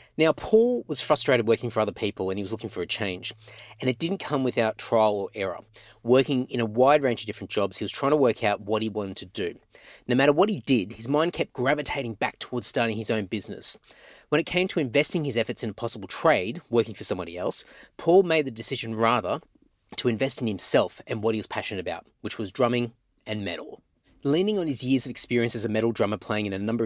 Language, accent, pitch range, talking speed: English, Australian, 110-140 Hz, 235 wpm